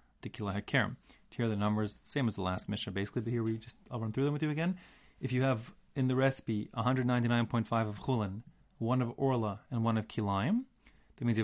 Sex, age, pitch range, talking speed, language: male, 30-49, 105-130 Hz, 220 wpm, English